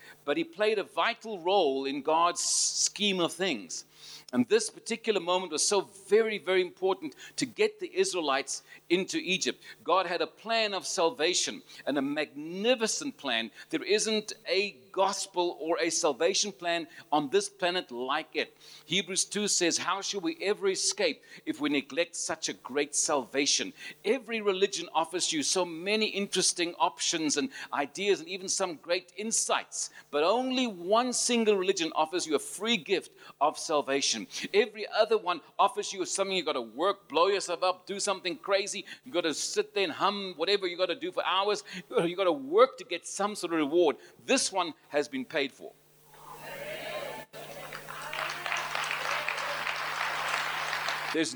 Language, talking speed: English, 160 wpm